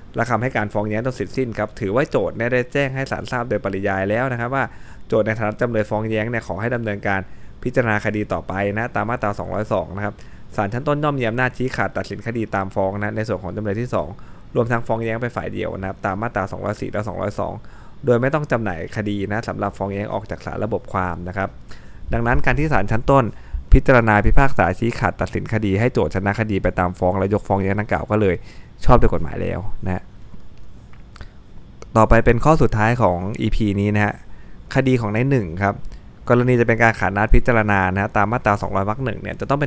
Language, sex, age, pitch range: Thai, male, 20-39, 100-120 Hz